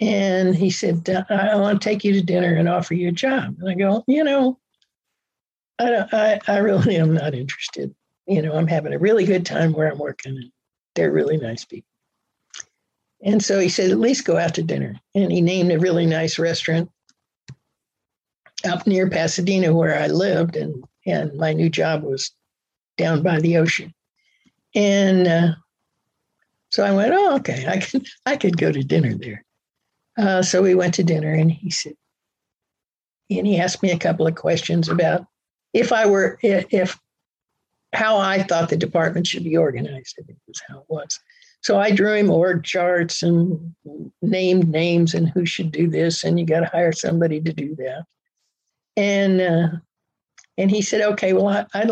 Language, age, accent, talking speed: English, 60-79, American, 185 wpm